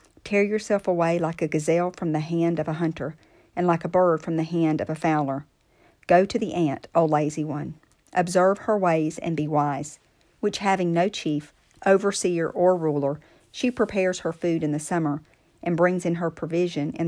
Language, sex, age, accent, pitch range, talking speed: English, female, 50-69, American, 155-185 Hz, 195 wpm